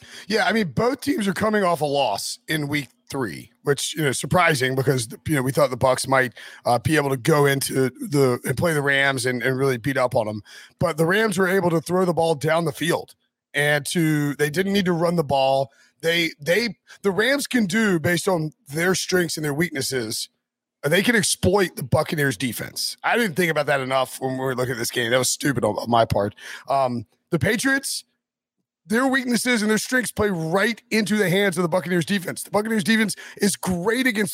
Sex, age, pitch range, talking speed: male, 30-49, 145-205 Hz, 220 wpm